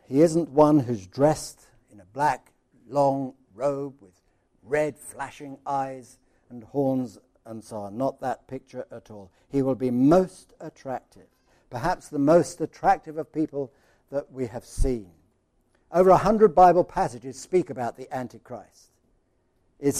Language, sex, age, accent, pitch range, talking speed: English, male, 60-79, British, 125-155 Hz, 145 wpm